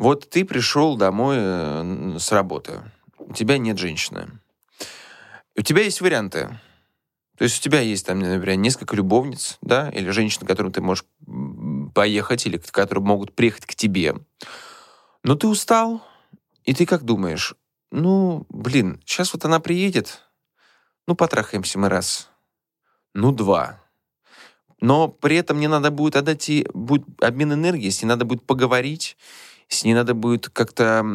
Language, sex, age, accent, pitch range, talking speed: Russian, male, 20-39, native, 105-155 Hz, 145 wpm